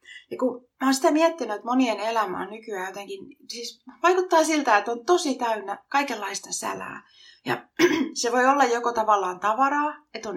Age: 30-49